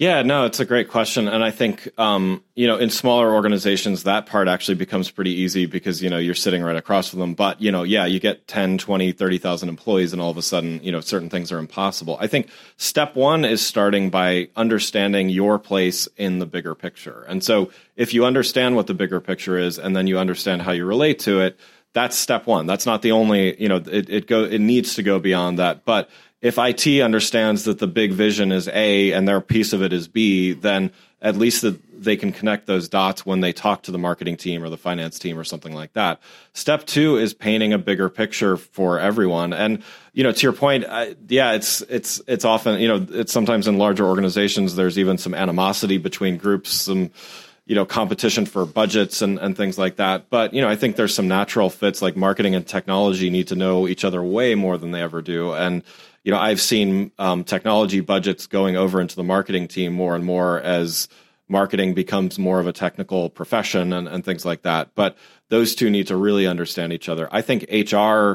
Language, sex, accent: English, male, American